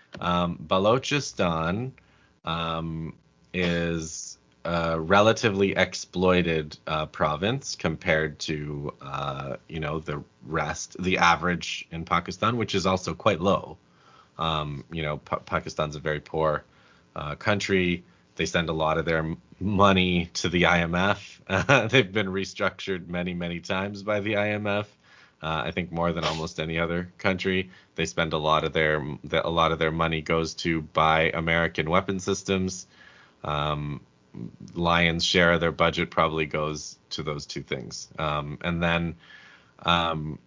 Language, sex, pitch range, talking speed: English, male, 80-90 Hz, 145 wpm